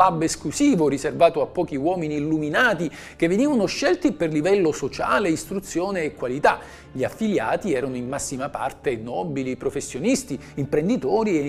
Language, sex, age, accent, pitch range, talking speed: Italian, male, 50-69, native, 150-250 Hz, 130 wpm